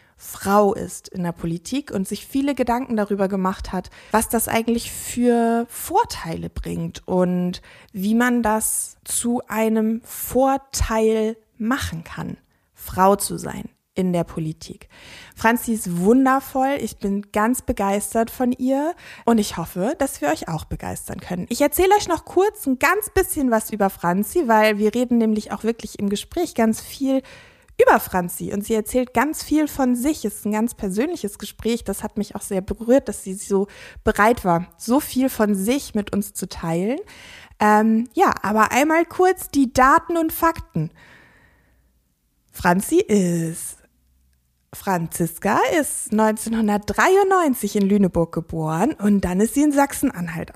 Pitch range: 190-260 Hz